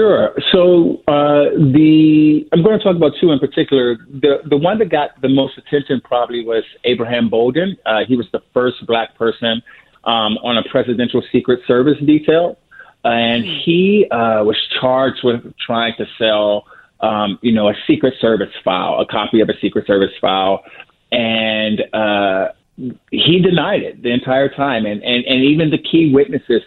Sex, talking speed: male, 170 wpm